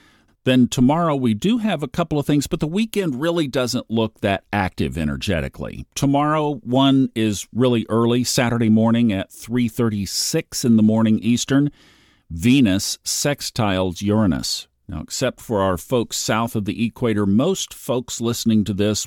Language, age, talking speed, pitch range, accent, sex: English, 50-69, 150 wpm, 95-130 Hz, American, male